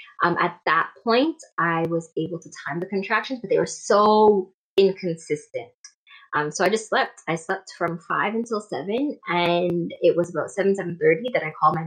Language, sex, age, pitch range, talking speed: English, female, 20-39, 165-225 Hz, 185 wpm